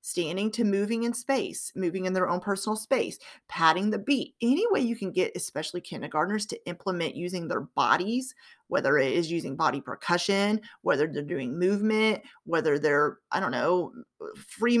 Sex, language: female, English